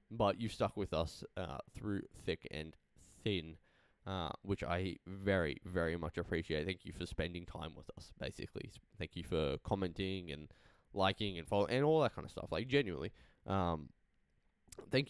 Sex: male